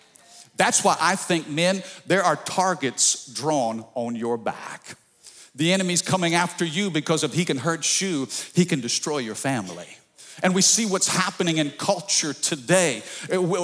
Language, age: English, 50-69